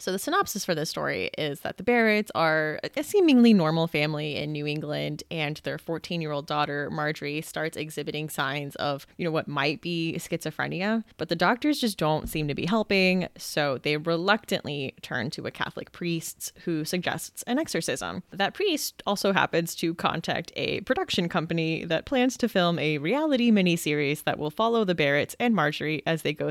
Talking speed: 180 wpm